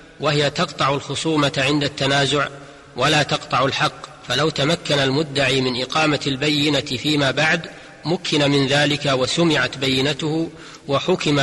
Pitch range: 140-160 Hz